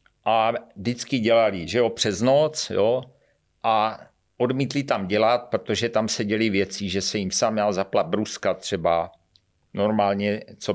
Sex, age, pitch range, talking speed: male, 50-69, 100-125 Hz, 150 wpm